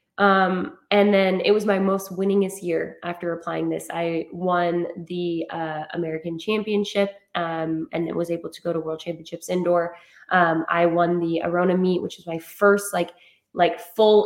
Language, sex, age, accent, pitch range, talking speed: English, female, 20-39, American, 170-200 Hz, 175 wpm